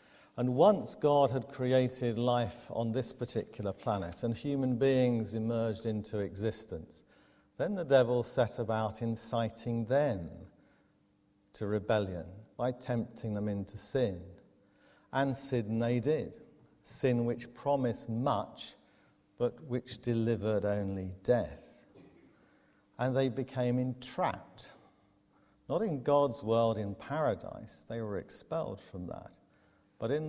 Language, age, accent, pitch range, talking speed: English, 50-69, British, 100-120 Hz, 120 wpm